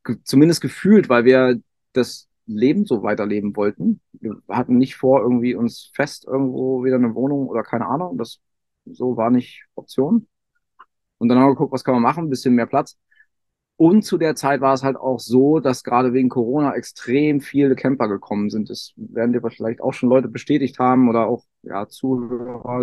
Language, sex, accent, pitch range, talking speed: German, male, German, 120-135 Hz, 190 wpm